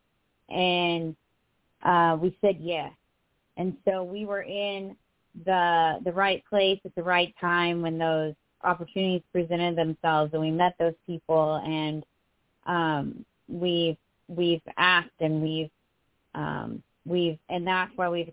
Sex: female